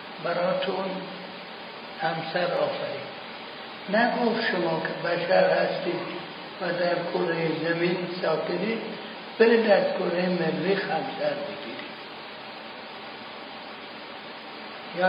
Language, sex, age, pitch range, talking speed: Persian, male, 60-79, 180-200 Hz, 80 wpm